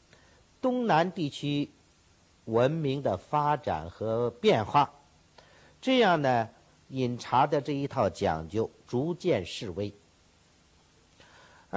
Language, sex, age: Chinese, male, 50-69